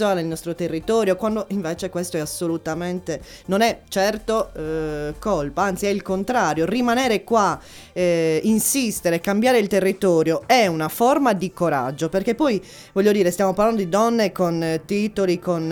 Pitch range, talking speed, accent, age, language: 165-215 Hz, 155 wpm, native, 20-39, Italian